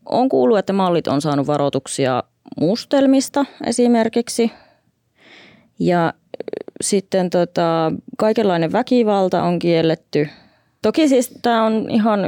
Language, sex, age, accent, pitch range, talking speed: Finnish, female, 20-39, native, 140-195 Hz, 105 wpm